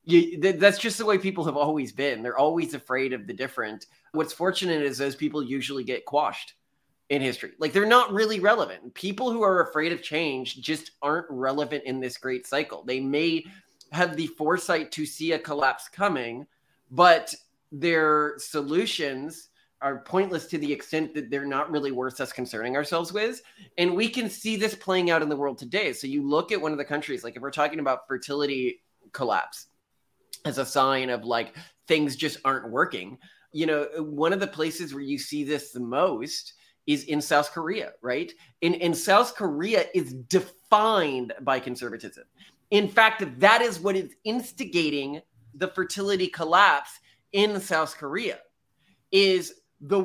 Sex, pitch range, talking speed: male, 140-190 Hz, 175 wpm